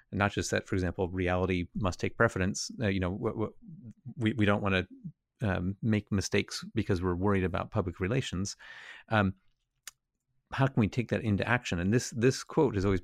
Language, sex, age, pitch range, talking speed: English, male, 30-49, 90-110 Hz, 185 wpm